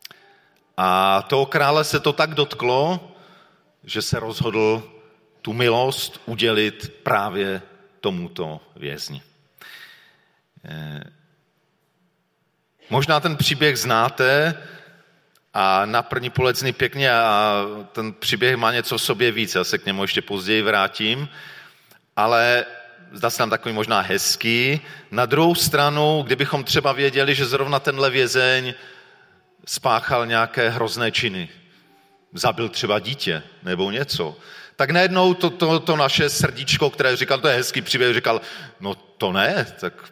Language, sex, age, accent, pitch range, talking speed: Czech, male, 40-59, native, 110-150 Hz, 125 wpm